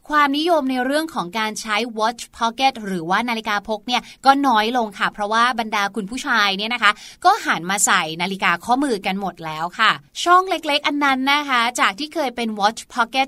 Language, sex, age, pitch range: Thai, female, 20-39, 220-290 Hz